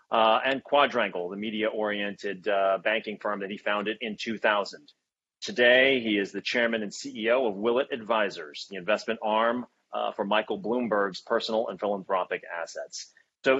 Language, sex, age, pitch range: Chinese, male, 30-49, 105-125 Hz